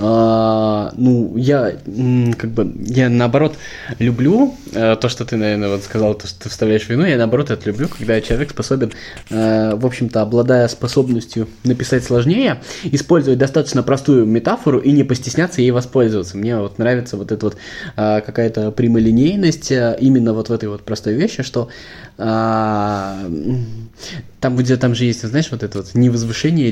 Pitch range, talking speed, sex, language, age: 105-125 Hz, 145 wpm, male, Russian, 20-39